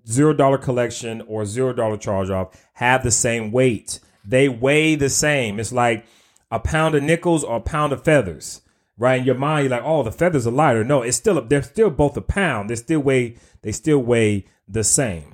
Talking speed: 200 wpm